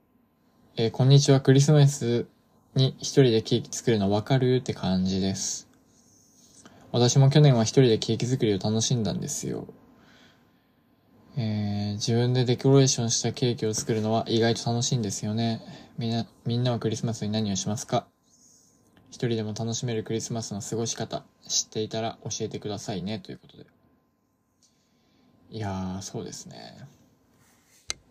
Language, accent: Japanese, native